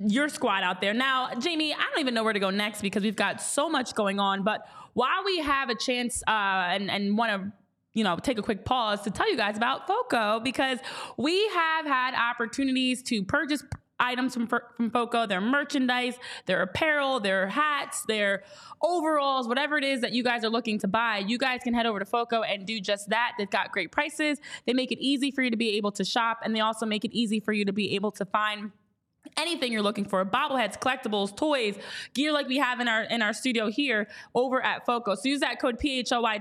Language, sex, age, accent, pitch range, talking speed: English, female, 20-39, American, 215-270 Hz, 220 wpm